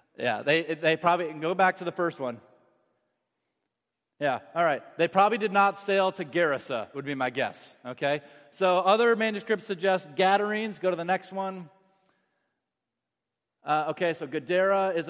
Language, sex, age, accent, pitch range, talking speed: English, male, 30-49, American, 145-180 Hz, 160 wpm